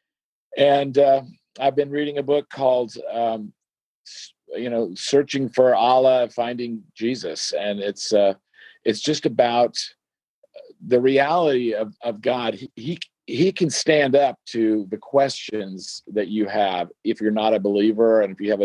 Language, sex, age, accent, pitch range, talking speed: English, male, 50-69, American, 110-135 Hz, 155 wpm